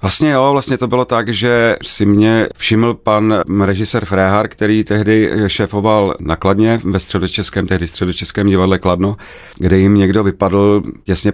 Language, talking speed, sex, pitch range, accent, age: Czech, 155 wpm, male, 85-105 Hz, native, 40-59